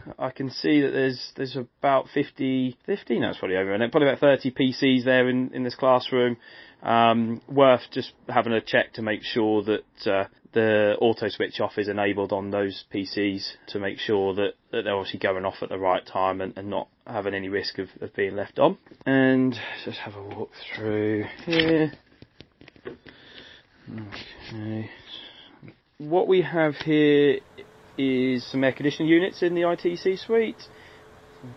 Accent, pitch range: British, 110-135 Hz